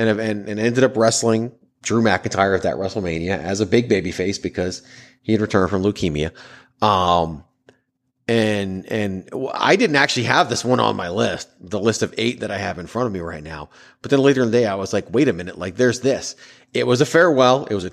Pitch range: 95-130 Hz